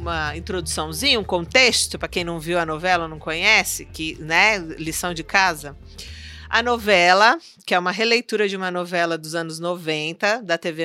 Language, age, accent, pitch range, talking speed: Portuguese, 40-59, Brazilian, 165-210 Hz, 170 wpm